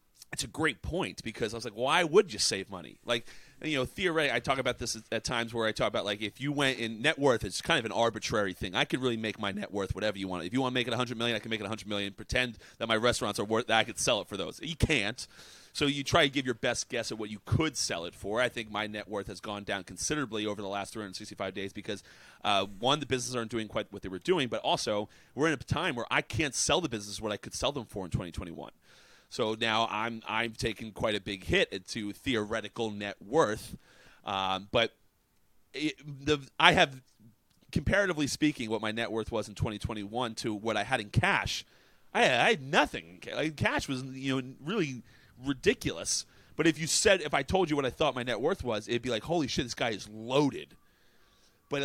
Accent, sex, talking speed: American, male, 240 wpm